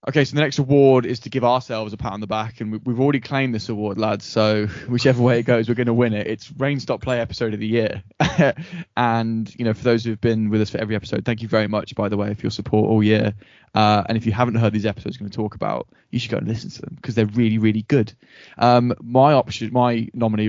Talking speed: 275 wpm